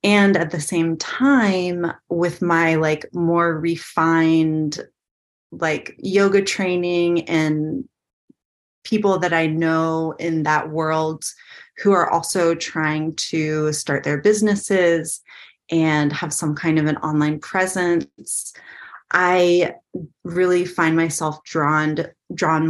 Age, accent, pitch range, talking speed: 30-49, American, 160-185 Hz, 115 wpm